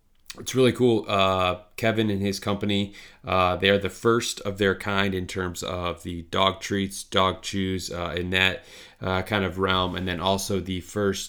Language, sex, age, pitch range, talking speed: English, male, 20-39, 90-100 Hz, 190 wpm